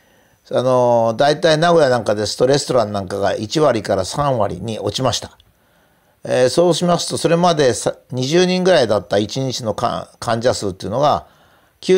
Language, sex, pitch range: Japanese, male, 120-175 Hz